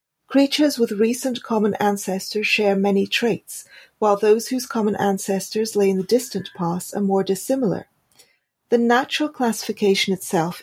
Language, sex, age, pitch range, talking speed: English, female, 40-59, 195-235 Hz, 140 wpm